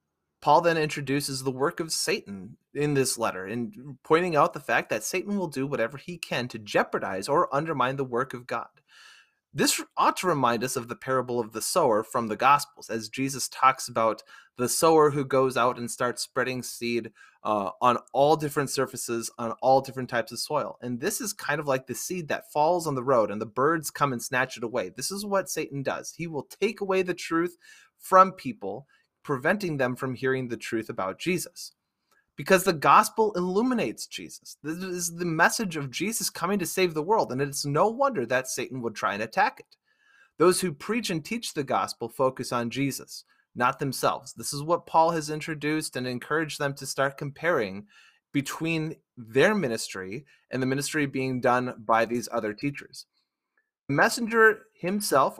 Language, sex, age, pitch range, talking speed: English, male, 30-49, 125-175 Hz, 190 wpm